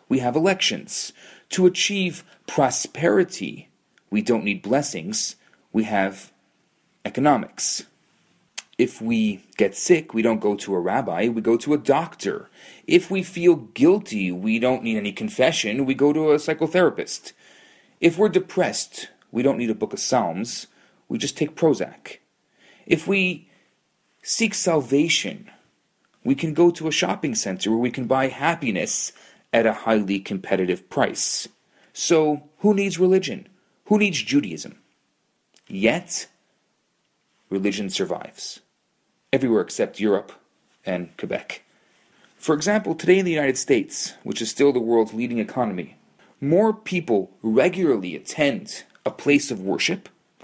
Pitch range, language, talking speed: 125-185 Hz, English, 135 wpm